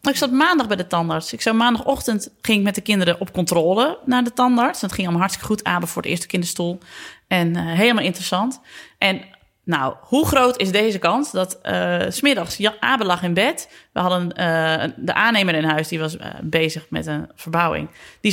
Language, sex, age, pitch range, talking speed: Dutch, female, 30-49, 175-230 Hz, 205 wpm